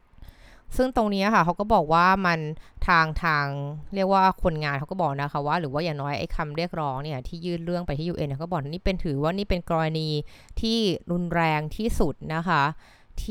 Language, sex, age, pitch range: Thai, female, 20-39, 145-185 Hz